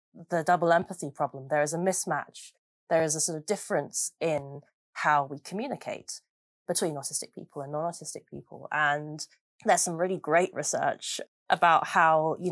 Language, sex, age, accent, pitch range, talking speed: English, female, 30-49, British, 150-190 Hz, 160 wpm